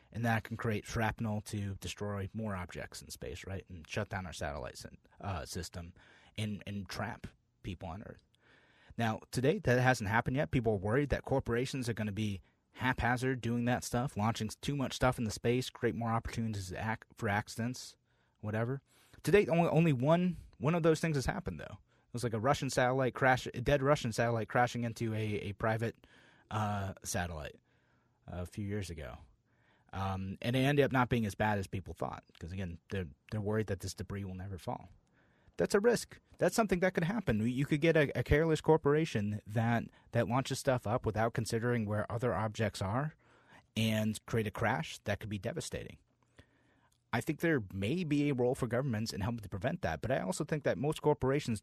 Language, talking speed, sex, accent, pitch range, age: English, 200 wpm, male, American, 105-130 Hz, 30-49